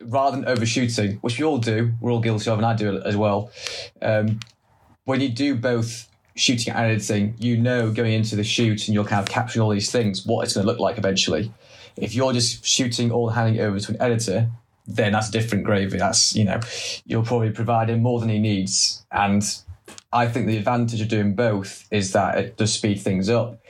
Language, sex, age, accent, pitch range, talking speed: English, male, 20-39, British, 105-115 Hz, 225 wpm